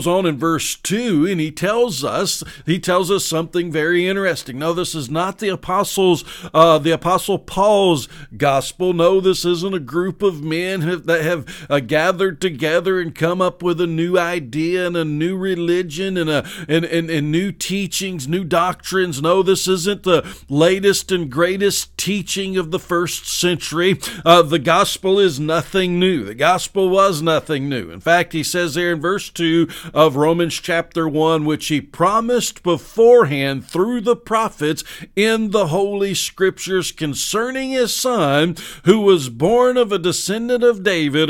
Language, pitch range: English, 160-195 Hz